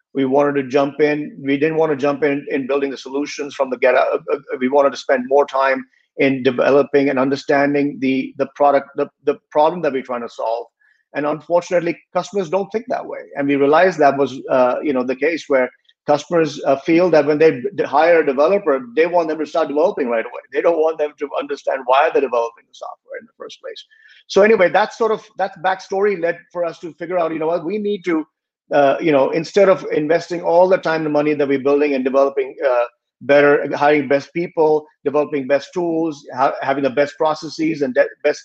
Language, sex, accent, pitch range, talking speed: English, male, Indian, 140-165 Hz, 220 wpm